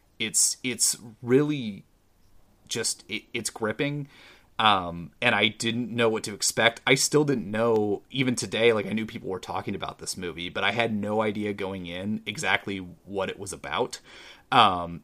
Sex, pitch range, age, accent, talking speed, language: male, 95-115 Hz, 30-49, American, 170 wpm, English